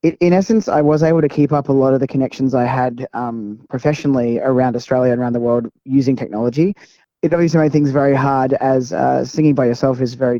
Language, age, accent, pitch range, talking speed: English, 20-39, Australian, 125-150 Hz, 220 wpm